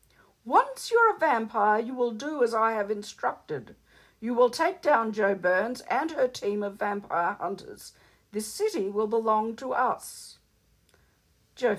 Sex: female